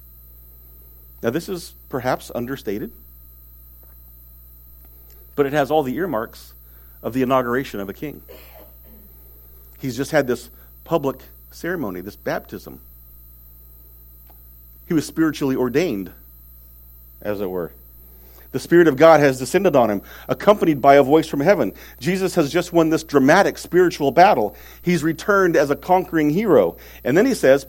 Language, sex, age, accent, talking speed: English, male, 50-69, American, 140 wpm